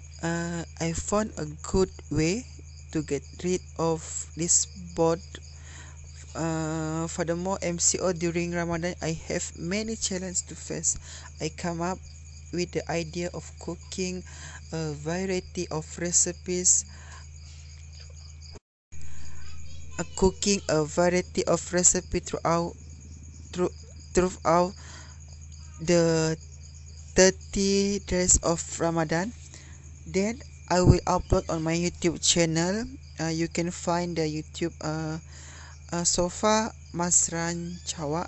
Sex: female